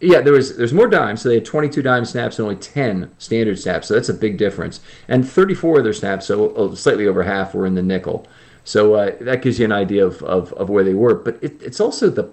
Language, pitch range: English, 100-125 Hz